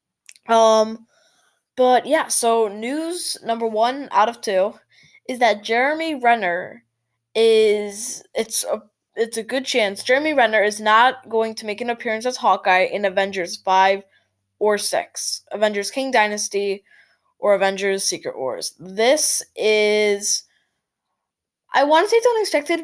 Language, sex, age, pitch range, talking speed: English, female, 10-29, 195-255 Hz, 135 wpm